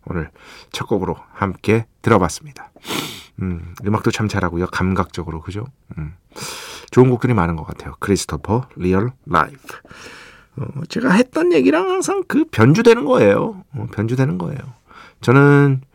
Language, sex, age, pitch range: Korean, male, 40-59, 100-140 Hz